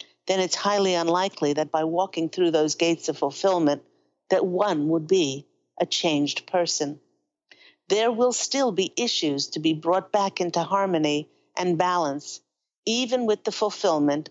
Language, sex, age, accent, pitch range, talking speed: English, female, 50-69, American, 160-210 Hz, 150 wpm